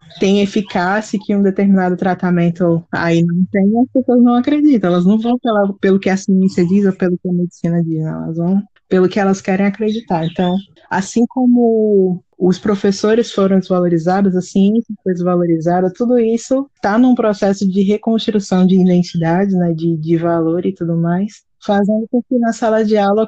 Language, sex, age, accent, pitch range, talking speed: Portuguese, female, 20-39, Brazilian, 180-225 Hz, 175 wpm